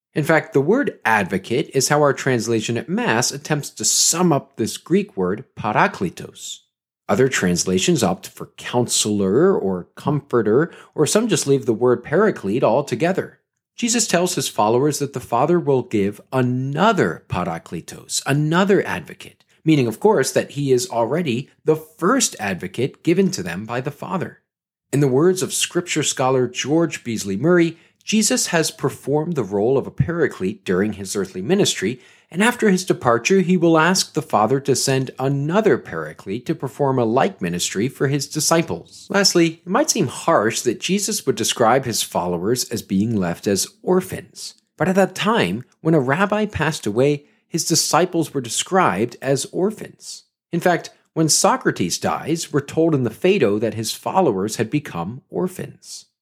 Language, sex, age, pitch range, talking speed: English, male, 40-59, 130-185 Hz, 160 wpm